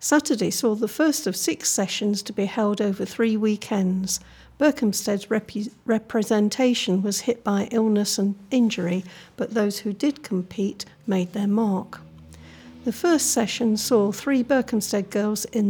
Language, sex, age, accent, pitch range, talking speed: English, female, 50-69, British, 195-230 Hz, 145 wpm